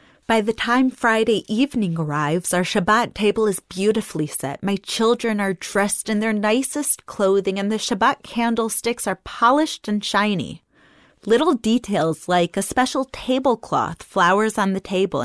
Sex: female